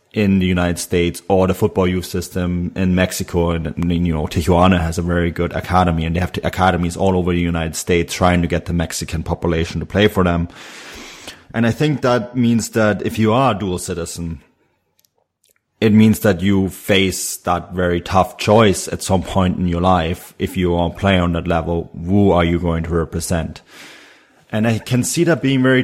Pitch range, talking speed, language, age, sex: 85-95 Hz, 200 wpm, English, 30-49, male